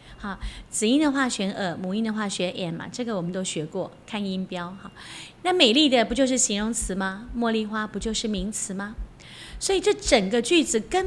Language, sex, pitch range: Chinese, female, 185-235 Hz